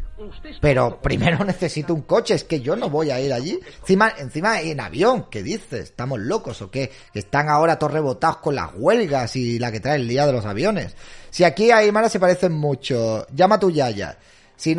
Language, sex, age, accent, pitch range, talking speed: Spanish, male, 30-49, Spanish, 125-215 Hz, 205 wpm